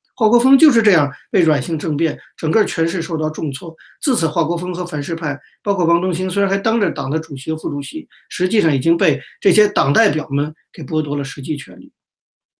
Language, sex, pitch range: Chinese, male, 145-185 Hz